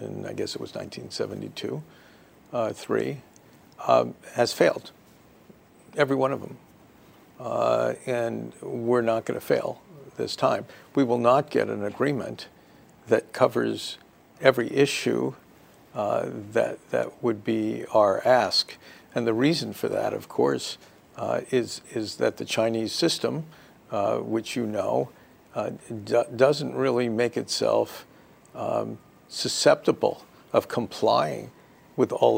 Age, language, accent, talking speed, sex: 50-69, English, American, 130 wpm, male